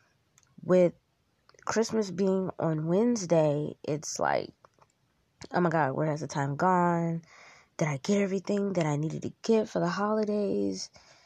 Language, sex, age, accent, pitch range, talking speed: English, female, 20-39, American, 155-205 Hz, 145 wpm